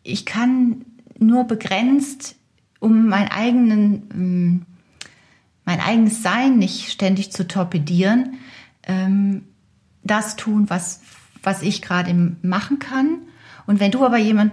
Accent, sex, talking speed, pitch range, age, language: German, female, 105 wpm, 185-225 Hz, 40-59, German